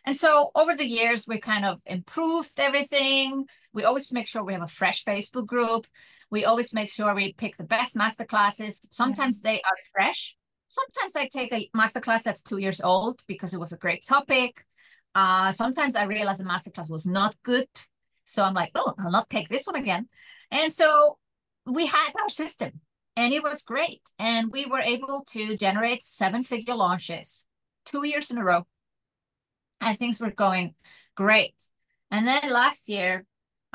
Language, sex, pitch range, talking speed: Polish, female, 190-250 Hz, 180 wpm